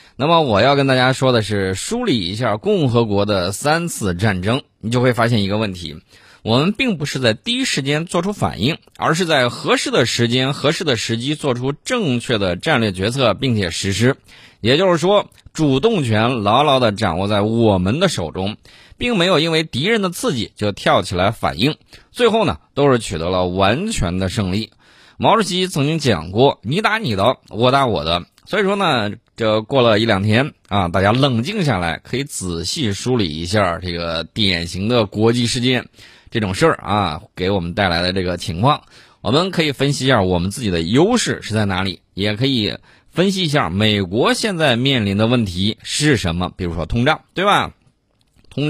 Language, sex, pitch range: Chinese, male, 95-140 Hz